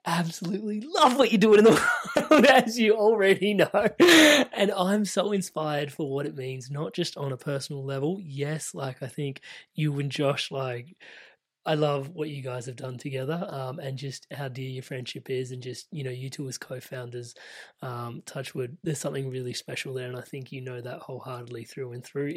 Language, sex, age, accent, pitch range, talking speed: English, male, 20-39, Australian, 130-150 Hz, 200 wpm